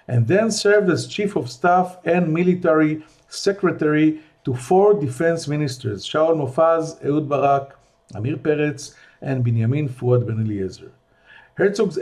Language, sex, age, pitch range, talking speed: English, male, 50-69, 130-180 Hz, 130 wpm